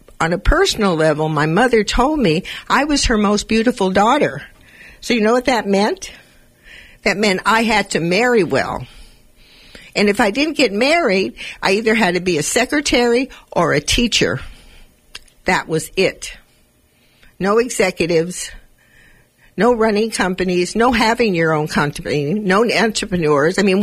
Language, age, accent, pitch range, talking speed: English, 60-79, American, 185-260 Hz, 150 wpm